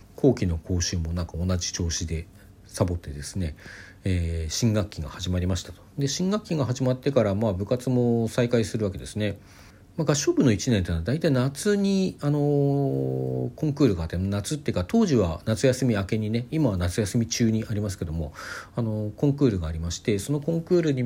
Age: 40-59